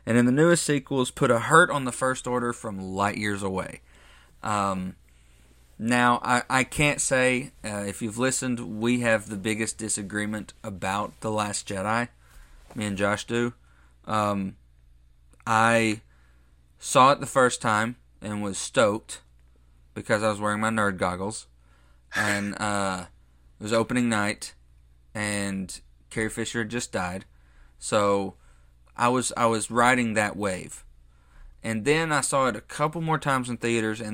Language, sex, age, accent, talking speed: English, male, 30-49, American, 155 wpm